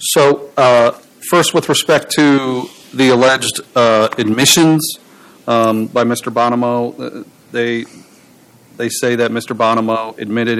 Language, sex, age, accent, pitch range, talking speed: English, male, 40-59, American, 115-135 Hz, 120 wpm